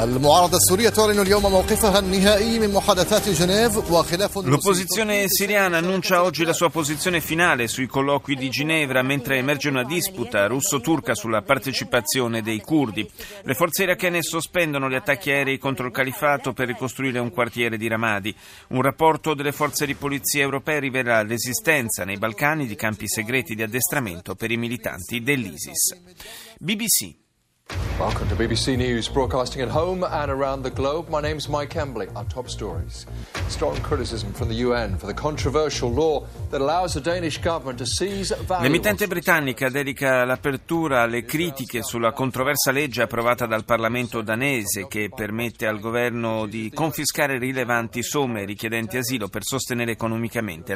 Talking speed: 100 wpm